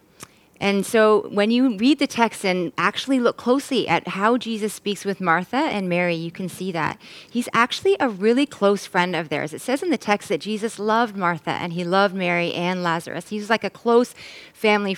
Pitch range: 180-235 Hz